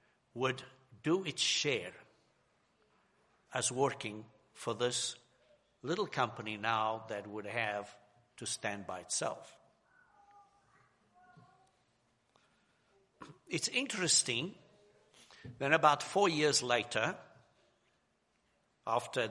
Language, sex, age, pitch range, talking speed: English, male, 60-79, 115-165 Hz, 80 wpm